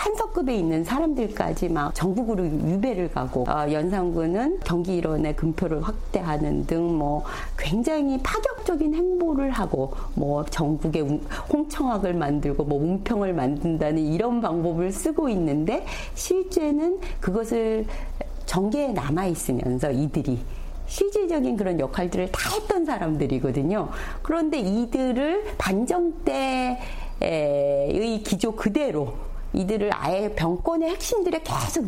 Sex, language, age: female, Korean, 40-59